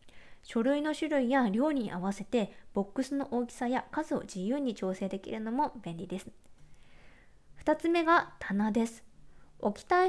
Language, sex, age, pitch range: Japanese, female, 20-39, 210-320 Hz